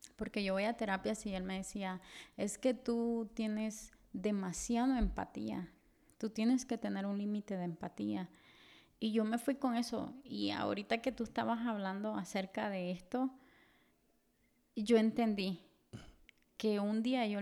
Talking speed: 150 wpm